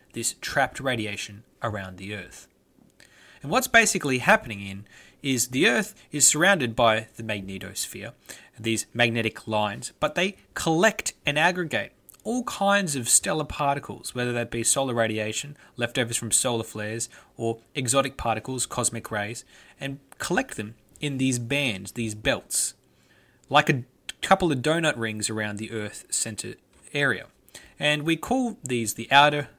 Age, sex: 20-39, male